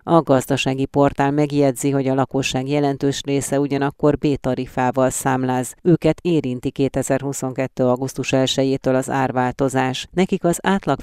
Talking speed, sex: 120 wpm, female